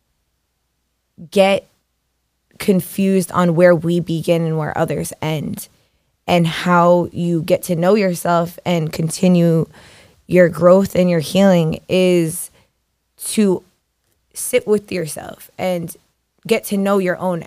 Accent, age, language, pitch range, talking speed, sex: American, 20-39, English, 165-185 Hz, 120 wpm, female